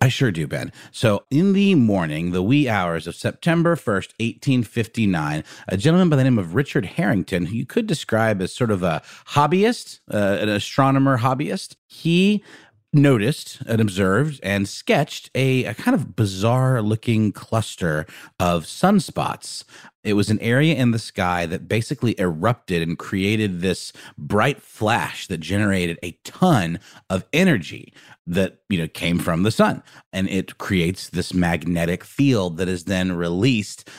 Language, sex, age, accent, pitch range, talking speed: English, male, 30-49, American, 95-135 Hz, 155 wpm